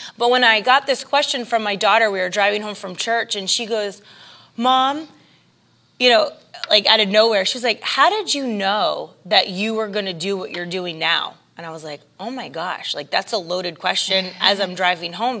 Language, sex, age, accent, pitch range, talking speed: English, female, 20-39, American, 190-245 Hz, 225 wpm